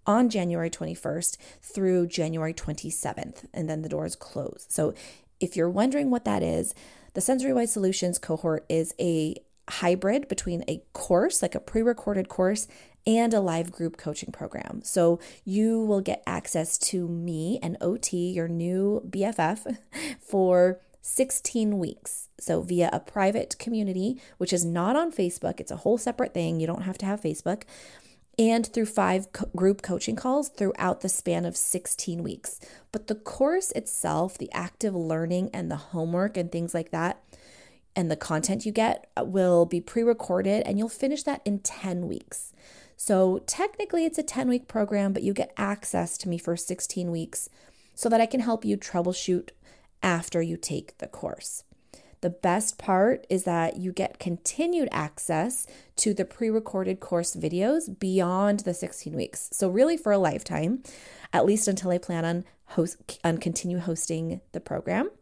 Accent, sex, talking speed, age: American, female, 165 wpm, 30-49